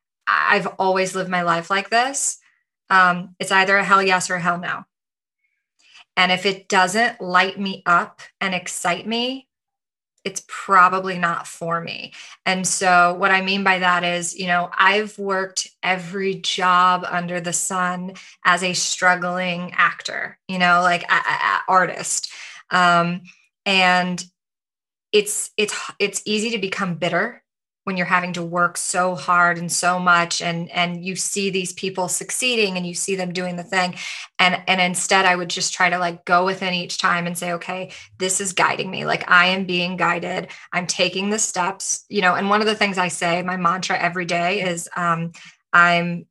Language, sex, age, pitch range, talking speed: English, female, 20-39, 175-190 Hz, 180 wpm